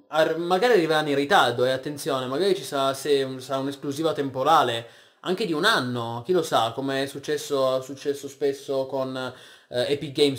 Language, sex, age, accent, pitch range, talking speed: Italian, male, 20-39, native, 125-160 Hz, 175 wpm